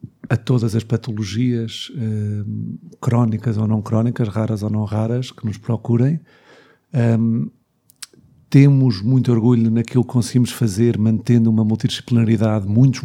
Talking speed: 120 wpm